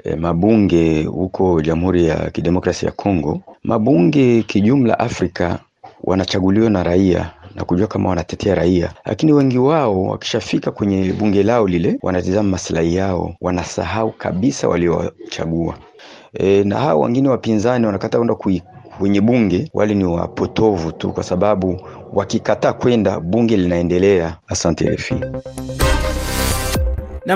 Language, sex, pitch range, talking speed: Swahili, male, 100-155 Hz, 120 wpm